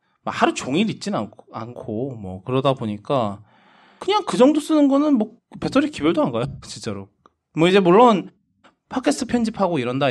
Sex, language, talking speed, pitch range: male, English, 140 wpm, 115-185 Hz